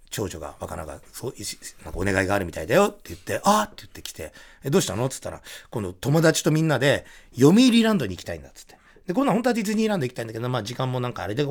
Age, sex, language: 40-59, male, Japanese